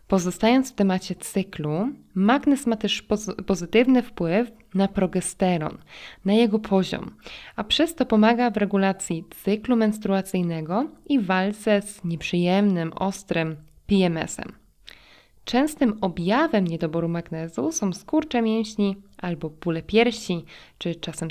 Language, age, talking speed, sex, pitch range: Polish, 20-39, 115 wpm, female, 175-230 Hz